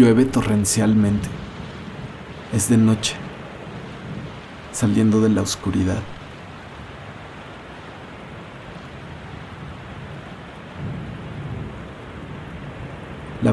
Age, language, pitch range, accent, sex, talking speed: 40-59, Spanish, 105-125 Hz, Mexican, male, 45 wpm